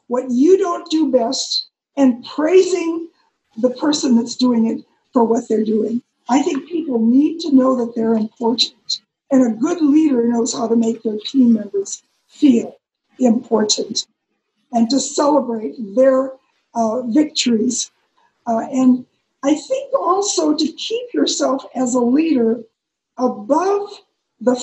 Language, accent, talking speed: English, American, 140 wpm